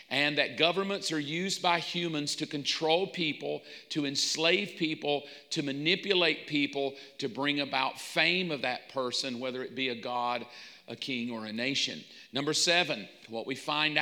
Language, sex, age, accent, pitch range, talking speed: English, male, 40-59, American, 140-170 Hz, 165 wpm